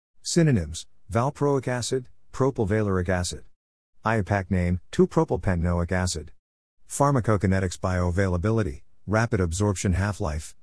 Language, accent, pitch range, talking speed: English, American, 90-115 Hz, 80 wpm